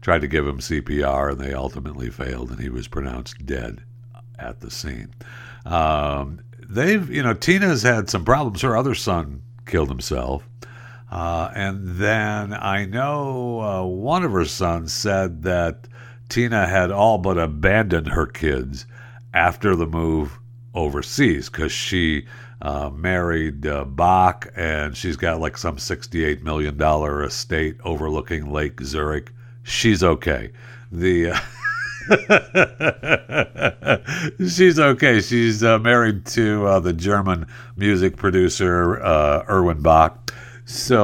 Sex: male